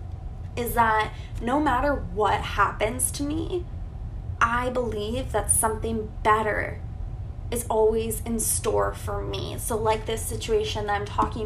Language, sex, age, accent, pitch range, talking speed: English, female, 20-39, American, 100-115 Hz, 135 wpm